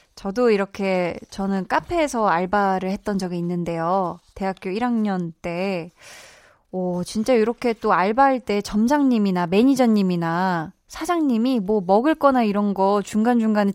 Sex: female